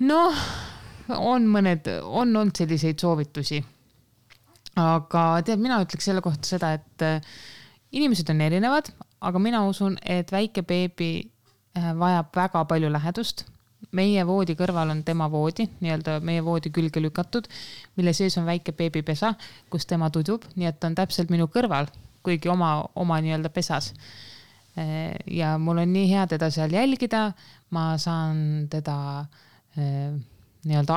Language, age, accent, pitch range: English, 20-39, Finnish, 150-180 Hz